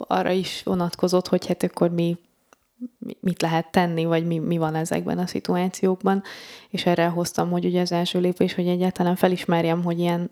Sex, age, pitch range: female, 20-39, 170-185 Hz